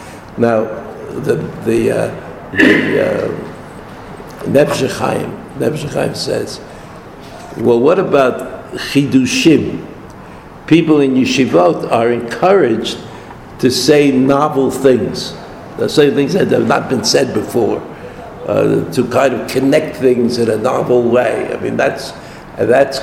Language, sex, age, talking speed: English, male, 70-89, 115 wpm